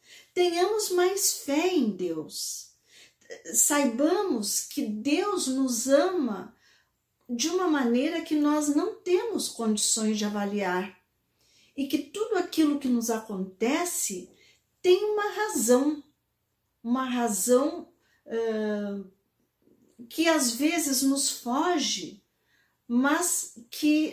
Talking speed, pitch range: 95 wpm, 235-315 Hz